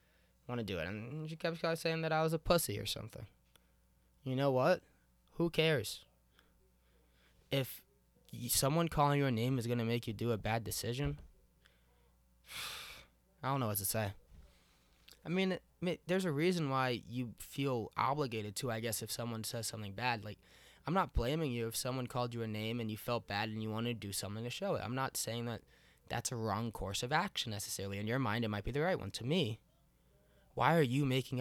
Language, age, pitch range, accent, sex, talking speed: English, 20-39, 95-135 Hz, American, male, 205 wpm